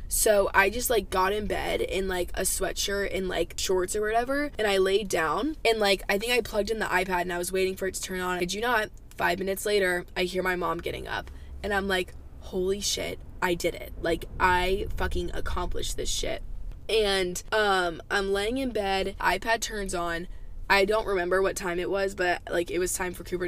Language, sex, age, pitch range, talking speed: English, female, 20-39, 180-205 Hz, 220 wpm